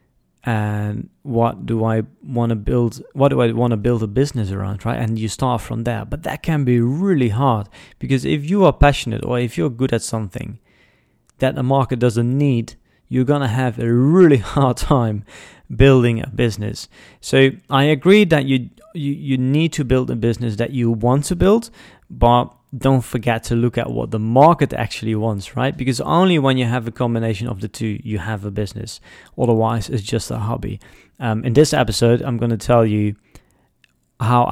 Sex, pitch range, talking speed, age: male, 110-135 Hz, 195 wpm, 30-49